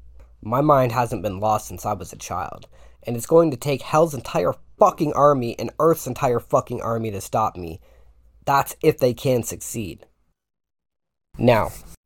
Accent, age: American, 20-39